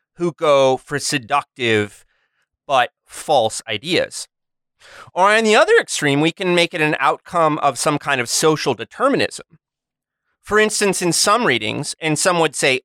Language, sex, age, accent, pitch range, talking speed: English, male, 30-49, American, 120-170 Hz, 155 wpm